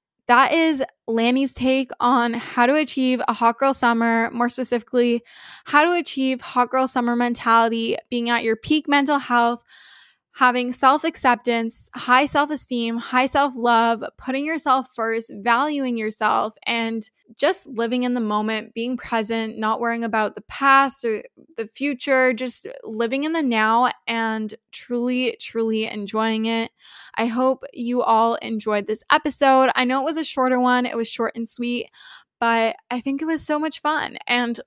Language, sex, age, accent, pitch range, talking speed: English, female, 10-29, American, 230-265 Hz, 160 wpm